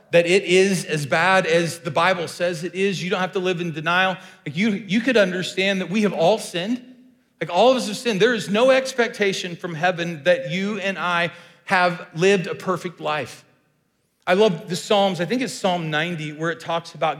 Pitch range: 145-185 Hz